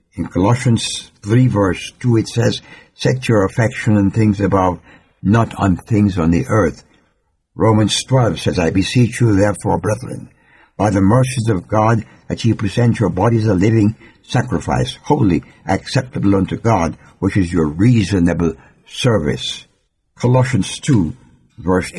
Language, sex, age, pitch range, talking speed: English, male, 60-79, 90-125 Hz, 140 wpm